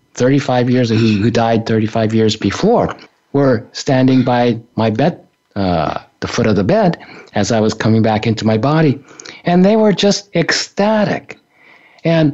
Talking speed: 155 wpm